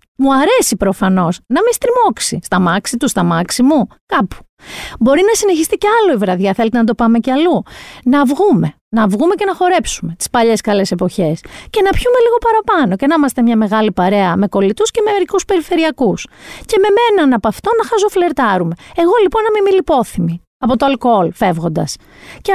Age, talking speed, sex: 40-59, 190 wpm, female